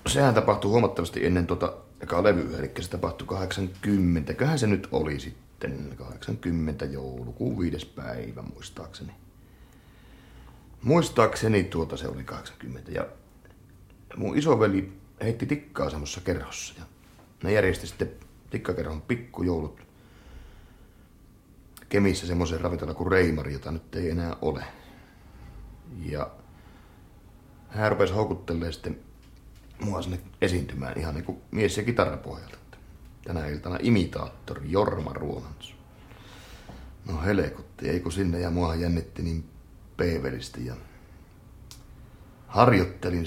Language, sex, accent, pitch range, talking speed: Finnish, male, native, 80-105 Hz, 105 wpm